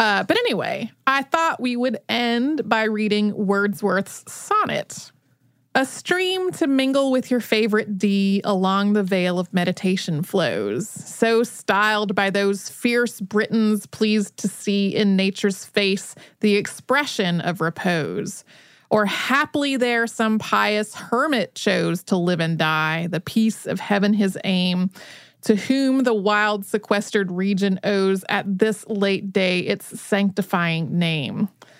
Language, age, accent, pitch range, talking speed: English, 30-49, American, 195-235 Hz, 135 wpm